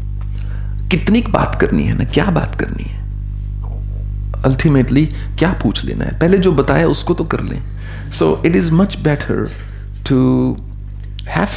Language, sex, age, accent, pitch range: English, male, 40-59, Indian, 100-130 Hz